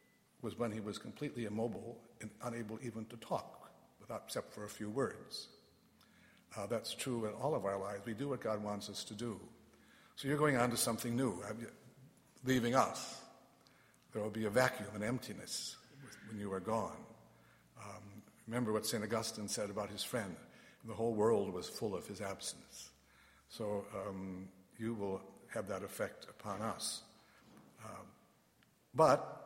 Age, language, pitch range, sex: 60-79, English, 110-130 Hz, male